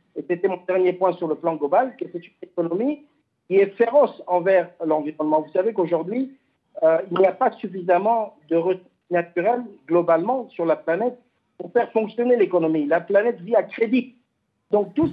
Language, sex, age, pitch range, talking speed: French, male, 50-69, 160-230 Hz, 180 wpm